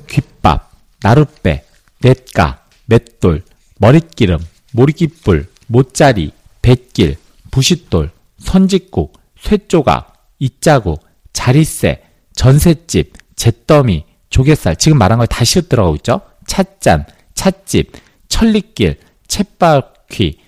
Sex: male